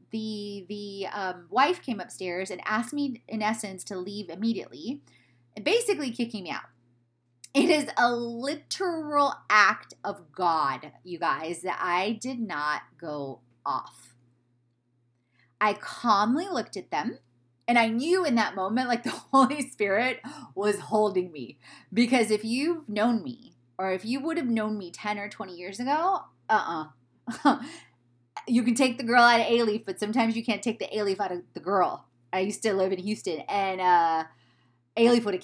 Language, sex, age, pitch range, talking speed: English, female, 20-39, 175-250 Hz, 170 wpm